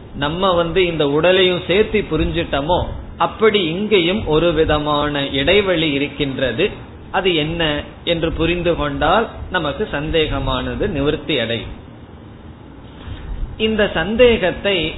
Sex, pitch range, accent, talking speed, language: male, 145-190 Hz, native, 90 wpm, Tamil